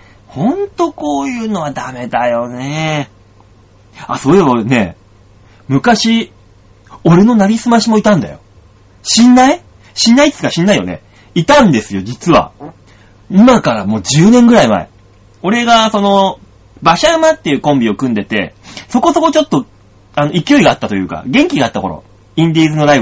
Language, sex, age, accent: Japanese, male, 30-49, native